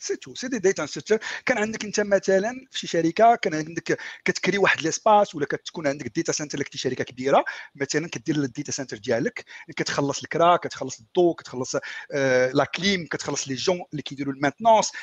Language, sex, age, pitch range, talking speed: Arabic, male, 50-69, 155-235 Hz, 170 wpm